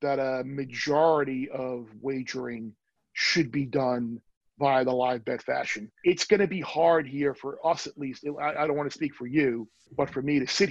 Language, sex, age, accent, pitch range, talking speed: English, male, 40-59, American, 140-155 Hz, 200 wpm